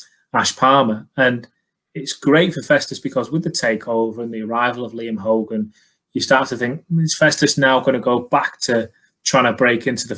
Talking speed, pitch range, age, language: 200 wpm, 110-140 Hz, 20-39, English